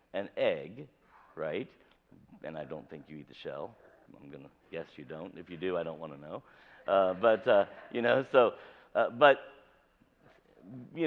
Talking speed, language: 180 wpm, English